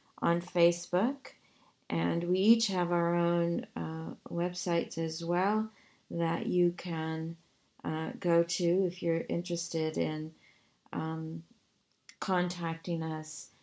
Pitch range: 165-190 Hz